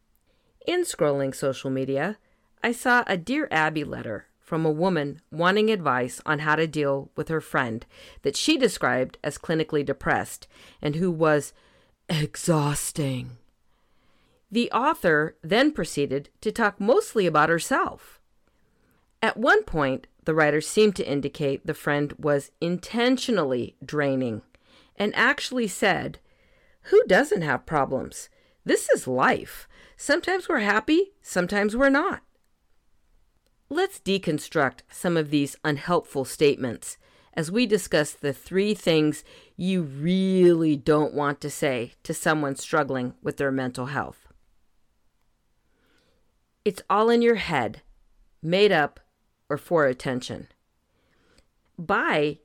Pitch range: 145-210 Hz